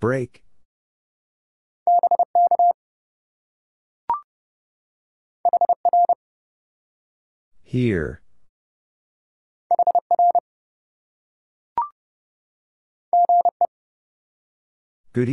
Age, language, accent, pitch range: 40-59, English, American, 295-350 Hz